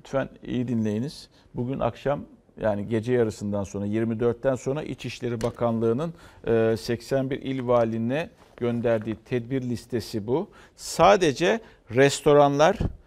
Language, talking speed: Turkish, 100 wpm